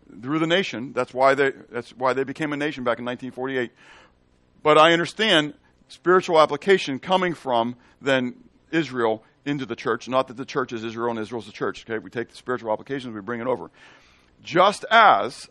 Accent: American